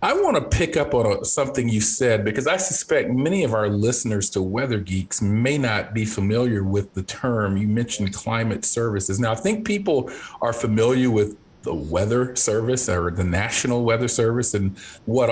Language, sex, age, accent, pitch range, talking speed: English, male, 40-59, American, 105-130 Hz, 185 wpm